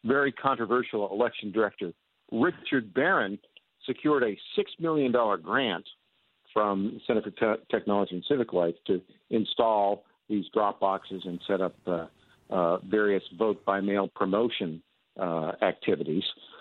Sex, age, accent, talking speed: male, 50-69, American, 125 wpm